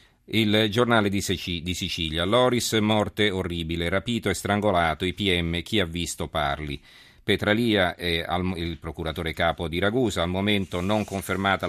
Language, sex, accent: Italian, male, native